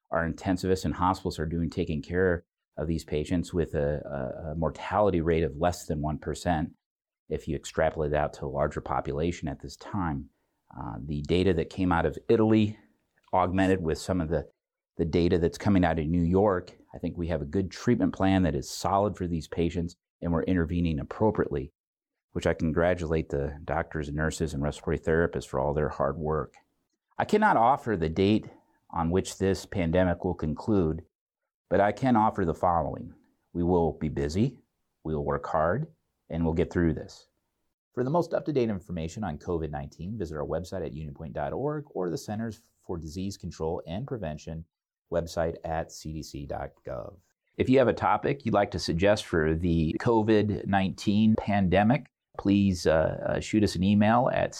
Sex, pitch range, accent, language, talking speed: male, 80-100 Hz, American, English, 180 wpm